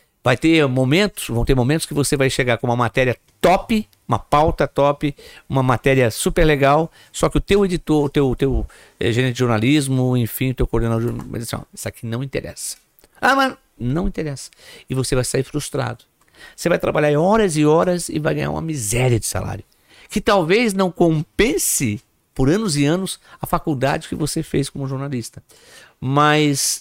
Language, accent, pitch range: Portuguese, Brazilian, 115-155 Hz